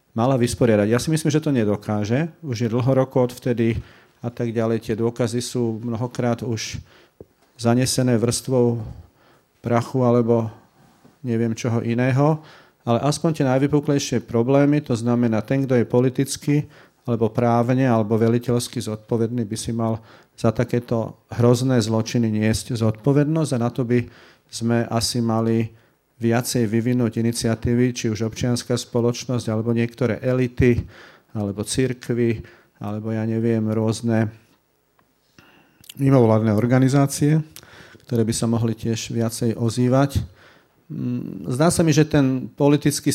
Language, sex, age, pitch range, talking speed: Slovak, male, 40-59, 115-130 Hz, 130 wpm